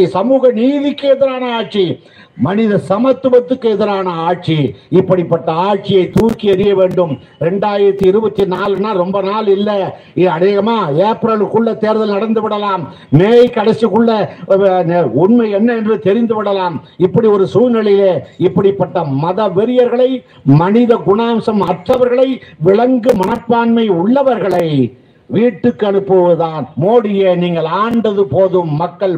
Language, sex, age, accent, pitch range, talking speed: Tamil, male, 50-69, native, 180-220 Hz, 65 wpm